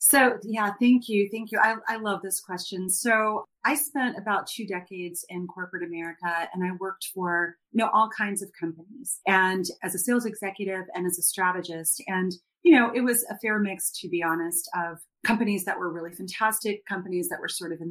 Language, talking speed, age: English, 210 wpm, 30-49